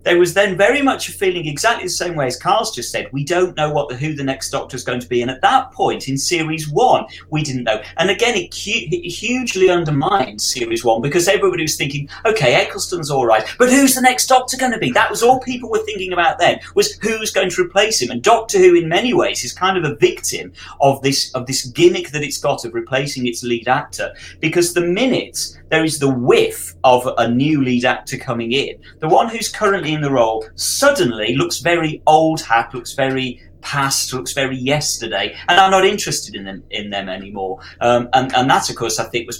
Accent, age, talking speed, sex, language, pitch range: British, 40-59, 225 wpm, male, English, 115-175 Hz